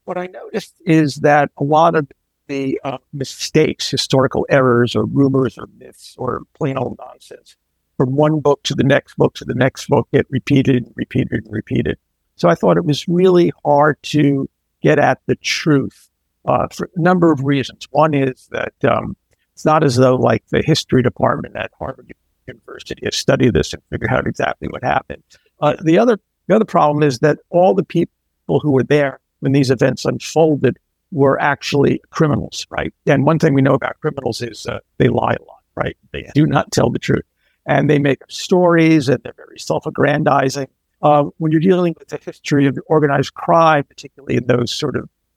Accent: American